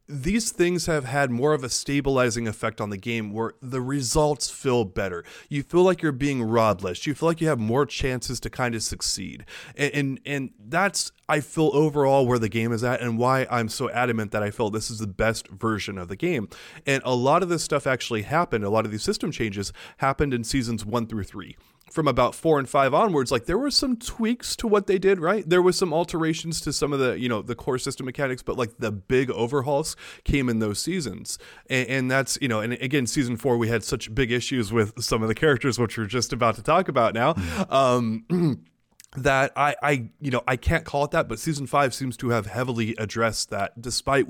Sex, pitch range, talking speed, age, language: male, 115-145 Hz, 230 wpm, 30-49, English